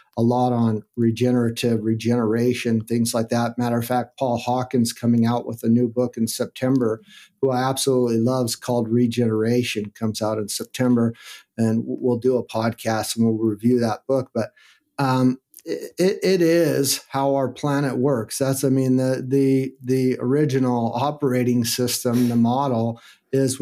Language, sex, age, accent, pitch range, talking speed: English, male, 50-69, American, 115-135 Hz, 160 wpm